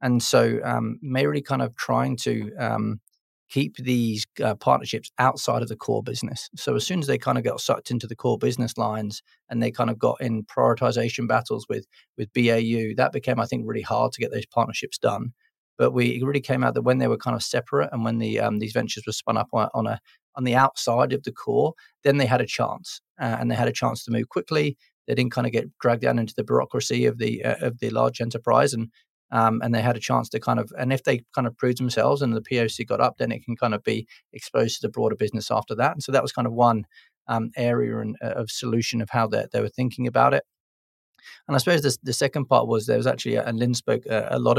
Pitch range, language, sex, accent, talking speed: 110-130 Hz, English, male, British, 255 wpm